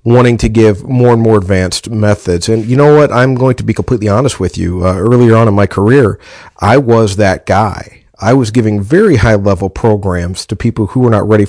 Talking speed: 225 wpm